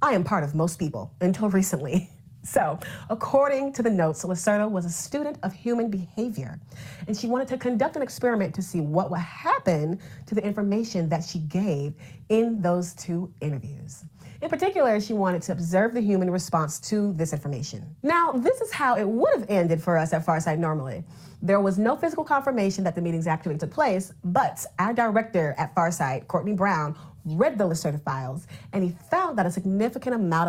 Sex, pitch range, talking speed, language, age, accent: female, 155-210 Hz, 190 wpm, English, 40-59, American